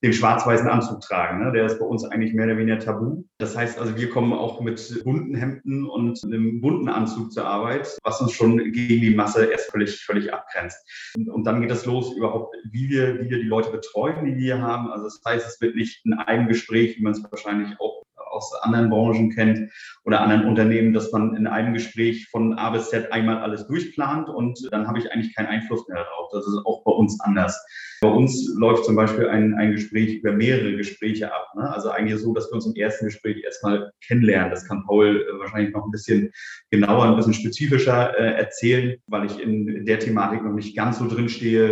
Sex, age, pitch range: male, 30-49, 110-120 Hz